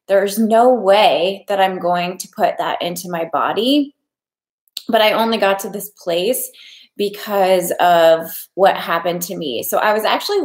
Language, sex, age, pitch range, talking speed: English, female, 20-39, 180-230 Hz, 165 wpm